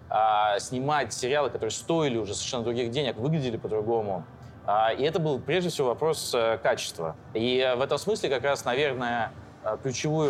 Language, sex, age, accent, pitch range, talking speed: Russian, male, 20-39, native, 115-150 Hz, 145 wpm